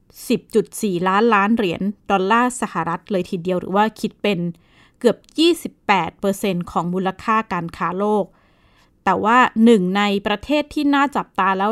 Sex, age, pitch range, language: female, 20-39, 190-235 Hz, Thai